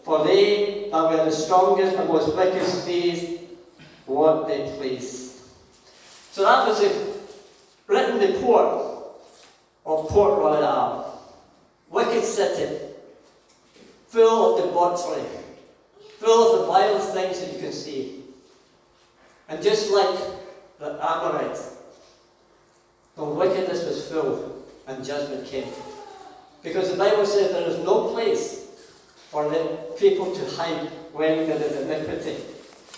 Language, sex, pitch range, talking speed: English, male, 155-225 Hz, 120 wpm